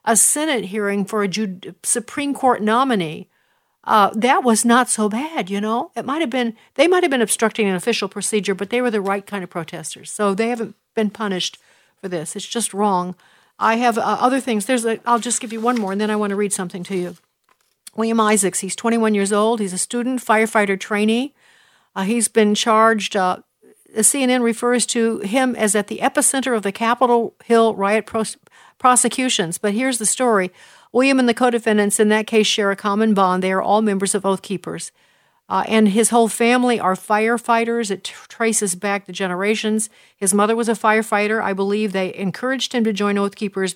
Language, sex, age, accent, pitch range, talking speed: English, female, 60-79, American, 195-235 Hz, 205 wpm